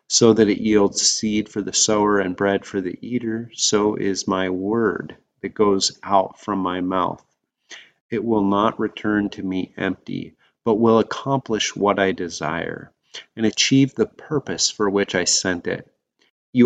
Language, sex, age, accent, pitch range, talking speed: English, male, 30-49, American, 95-110 Hz, 165 wpm